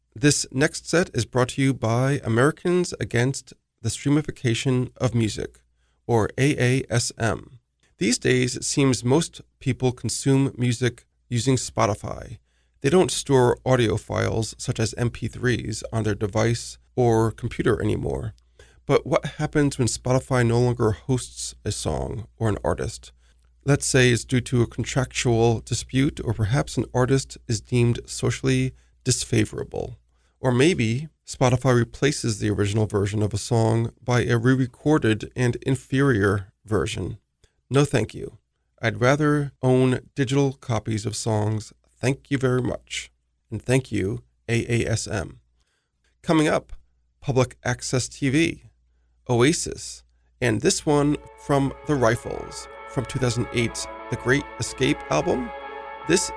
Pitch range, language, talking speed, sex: 110-135 Hz, English, 130 wpm, male